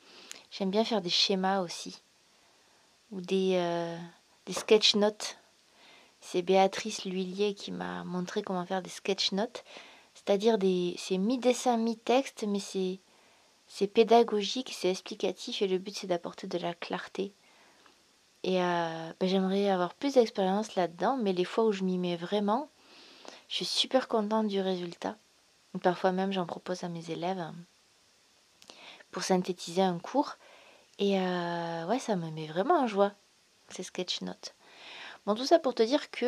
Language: French